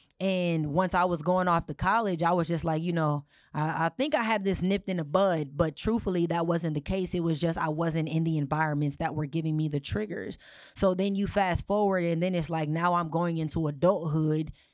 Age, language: 20-39, English